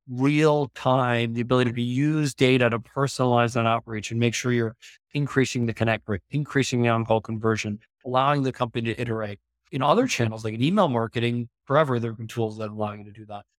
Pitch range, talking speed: 115-135 Hz, 205 wpm